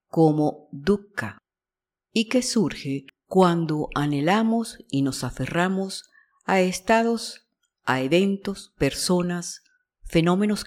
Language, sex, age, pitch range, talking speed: English, female, 50-69, 145-205 Hz, 90 wpm